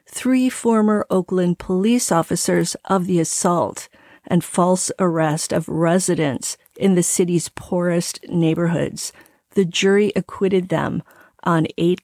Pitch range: 175-215 Hz